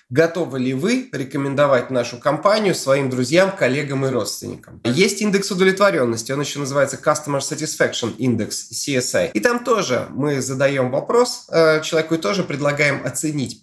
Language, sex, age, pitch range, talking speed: Russian, male, 20-39, 125-165 Hz, 135 wpm